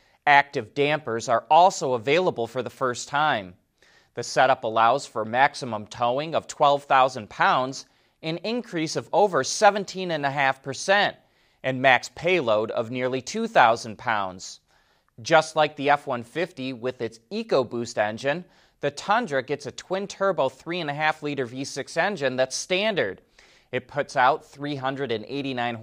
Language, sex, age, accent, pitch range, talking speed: English, male, 30-49, American, 125-160 Hz, 125 wpm